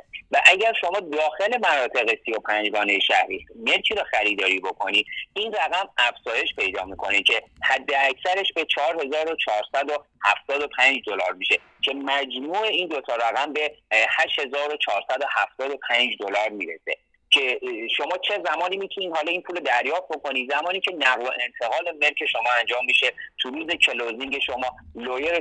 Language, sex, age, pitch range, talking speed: Persian, male, 30-49, 135-205 Hz, 135 wpm